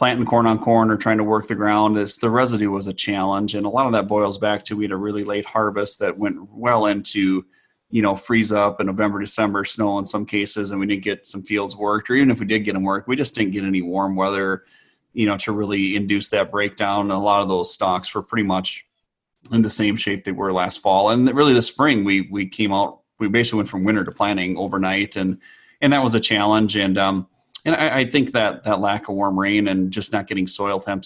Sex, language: male, English